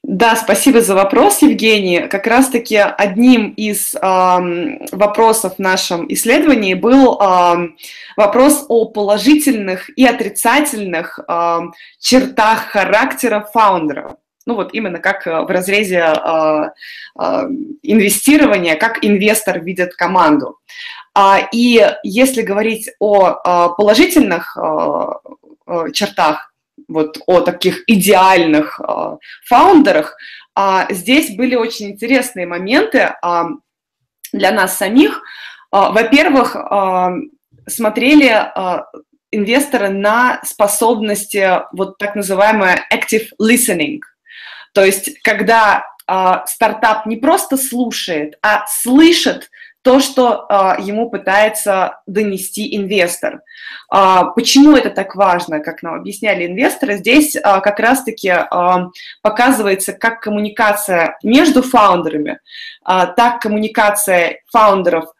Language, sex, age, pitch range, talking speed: Russian, female, 20-39, 190-255 Hz, 95 wpm